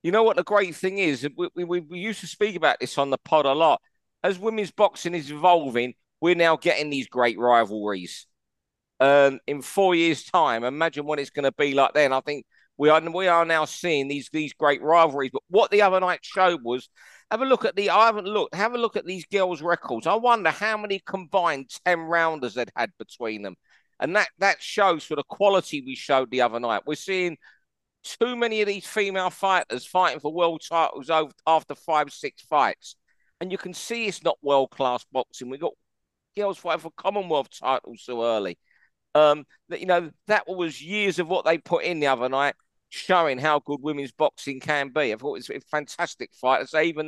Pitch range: 140-185 Hz